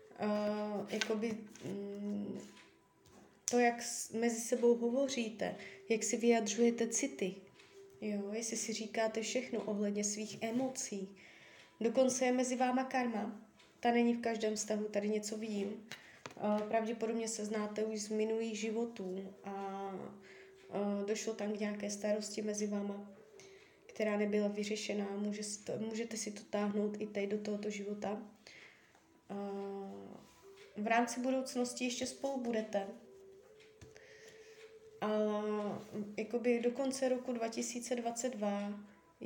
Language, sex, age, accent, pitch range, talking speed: Czech, female, 20-39, native, 210-245 Hz, 120 wpm